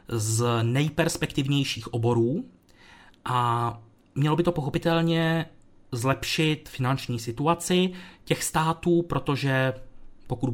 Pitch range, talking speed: 115-140 Hz, 85 wpm